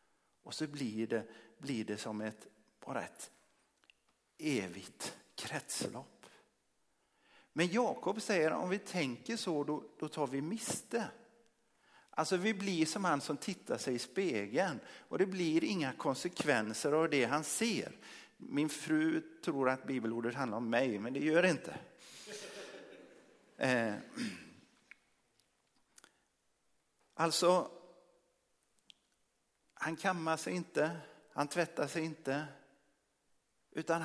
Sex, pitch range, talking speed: male, 135-175 Hz, 120 wpm